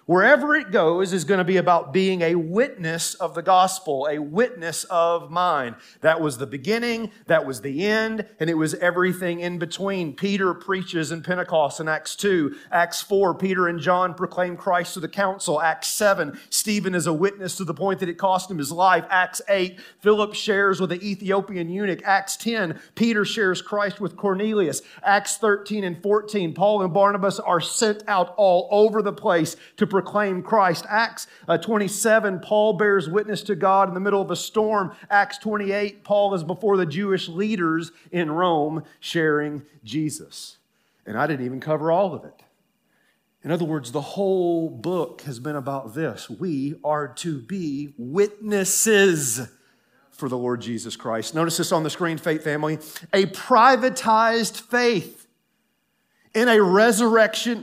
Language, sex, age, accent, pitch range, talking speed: English, male, 40-59, American, 165-205 Hz, 170 wpm